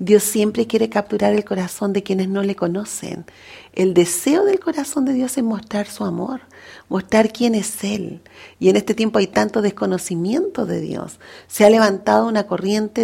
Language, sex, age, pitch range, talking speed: Spanish, female, 40-59, 205-280 Hz, 180 wpm